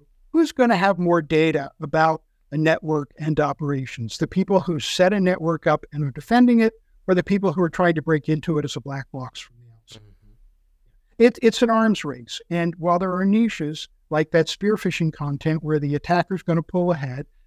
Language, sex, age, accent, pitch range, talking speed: English, male, 60-79, American, 145-185 Hz, 205 wpm